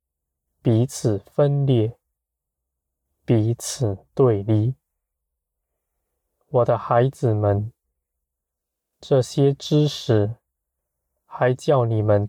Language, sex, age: Chinese, male, 20-39